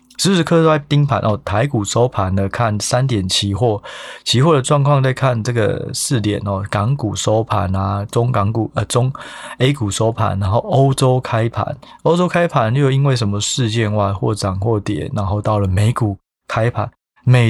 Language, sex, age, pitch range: Chinese, male, 20-39, 105-135 Hz